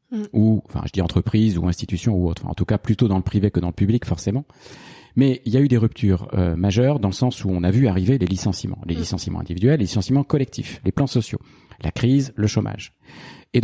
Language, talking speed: French, 240 wpm